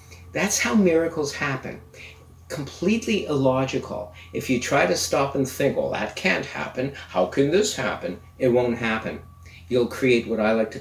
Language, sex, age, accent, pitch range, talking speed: English, male, 50-69, American, 90-135 Hz, 165 wpm